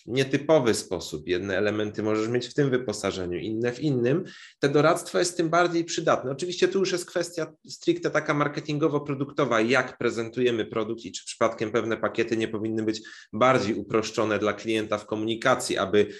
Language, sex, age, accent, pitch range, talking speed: Polish, male, 20-39, native, 115-150 Hz, 165 wpm